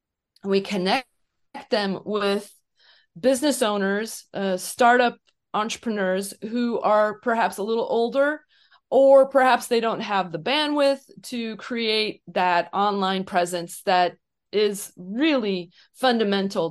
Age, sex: 30-49, female